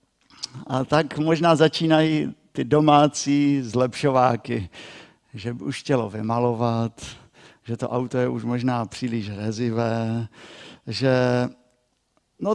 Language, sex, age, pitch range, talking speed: Czech, male, 50-69, 125-180 Hz, 105 wpm